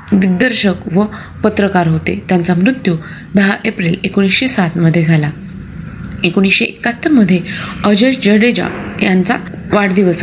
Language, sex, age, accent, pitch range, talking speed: Marathi, female, 30-49, native, 175-220 Hz, 110 wpm